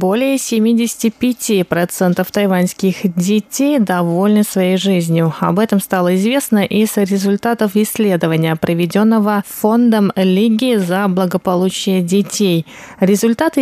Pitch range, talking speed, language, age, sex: 180-225 Hz, 95 wpm, Russian, 20-39, female